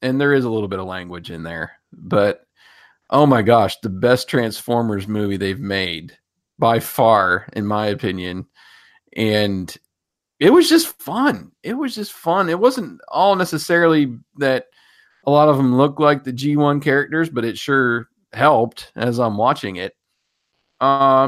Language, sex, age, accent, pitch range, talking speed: English, male, 40-59, American, 110-140 Hz, 160 wpm